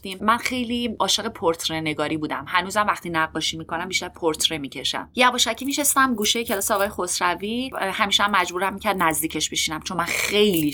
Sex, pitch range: female, 160-215 Hz